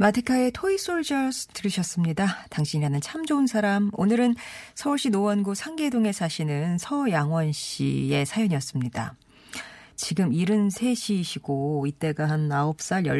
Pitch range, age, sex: 150-220 Hz, 40-59, female